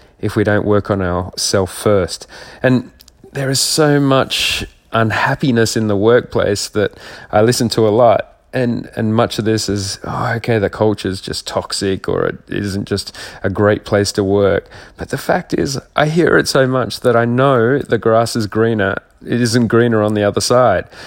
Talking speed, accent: 195 wpm, Australian